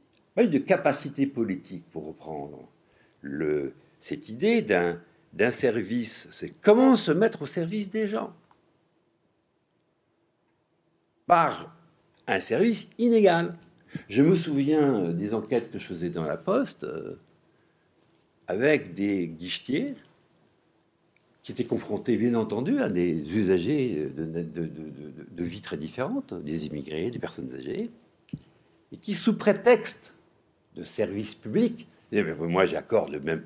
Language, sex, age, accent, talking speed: French, male, 60-79, French, 120 wpm